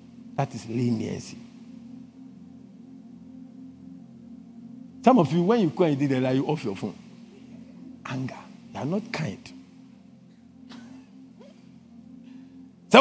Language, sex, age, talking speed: English, male, 50-69, 95 wpm